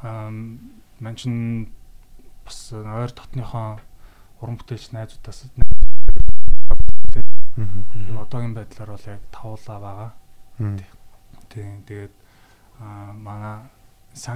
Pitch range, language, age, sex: 100-115 Hz, Korean, 20-39, male